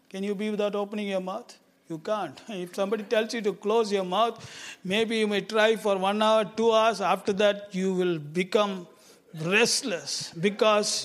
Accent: Indian